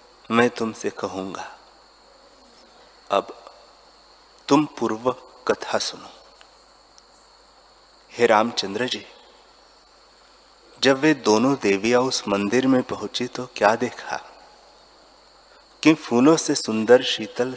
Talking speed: 90 wpm